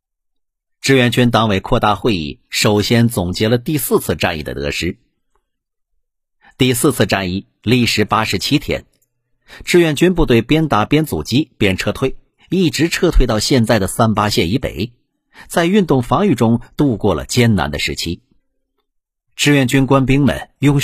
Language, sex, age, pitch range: Chinese, male, 50-69, 105-135 Hz